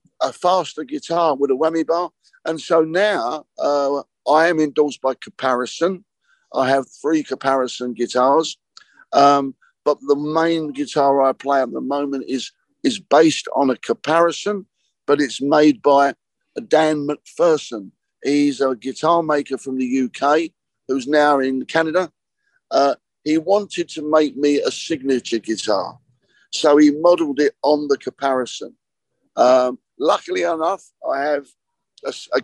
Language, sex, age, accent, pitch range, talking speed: Italian, male, 50-69, British, 130-160 Hz, 140 wpm